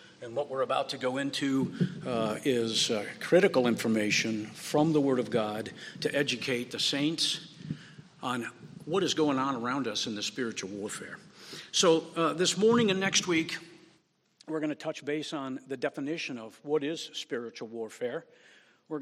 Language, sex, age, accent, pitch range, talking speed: English, male, 50-69, American, 135-165 Hz, 165 wpm